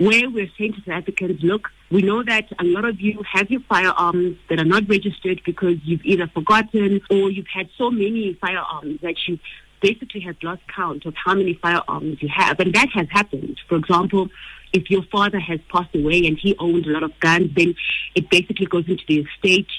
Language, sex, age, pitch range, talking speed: English, female, 50-69, 170-200 Hz, 210 wpm